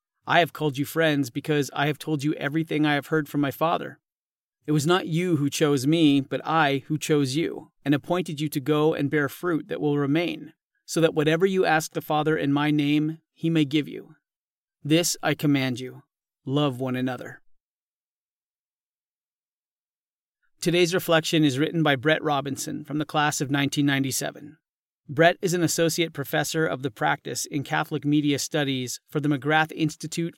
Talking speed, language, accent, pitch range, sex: 175 wpm, English, American, 140-160 Hz, male